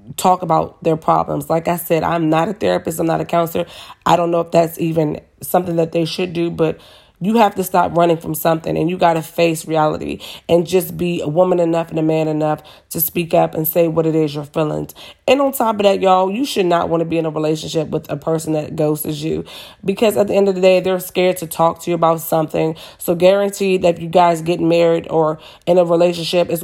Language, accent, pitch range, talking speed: English, American, 160-185 Hz, 245 wpm